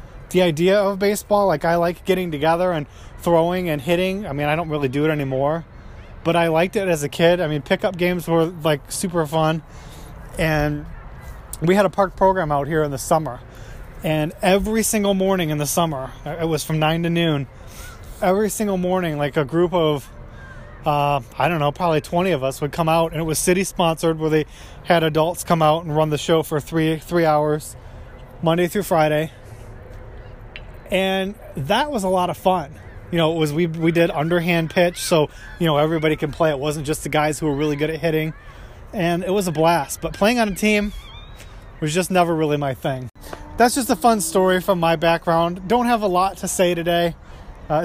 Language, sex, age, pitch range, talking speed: English, male, 20-39, 150-185 Hz, 205 wpm